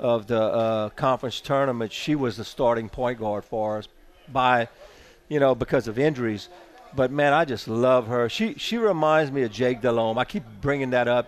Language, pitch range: English, 115-145 Hz